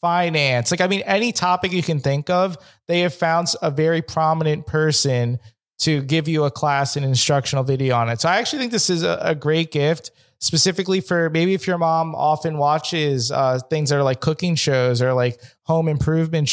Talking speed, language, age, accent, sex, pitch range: 205 wpm, English, 20-39, American, male, 140-175 Hz